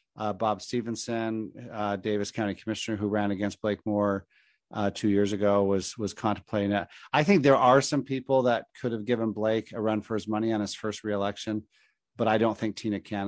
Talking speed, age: 210 wpm, 40-59